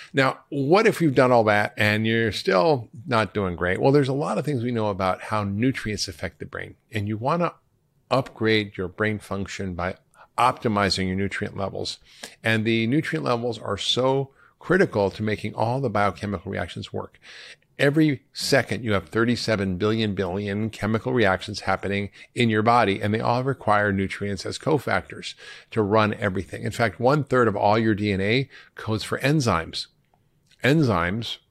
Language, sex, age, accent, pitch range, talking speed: English, male, 50-69, American, 100-135 Hz, 170 wpm